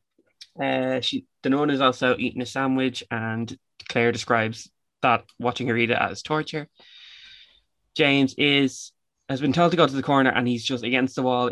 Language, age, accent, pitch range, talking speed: English, 20-39, Irish, 120-140 Hz, 175 wpm